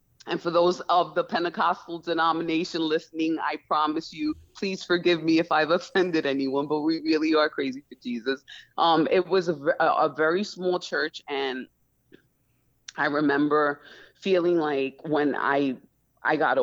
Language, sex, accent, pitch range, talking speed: English, female, American, 145-175 Hz, 150 wpm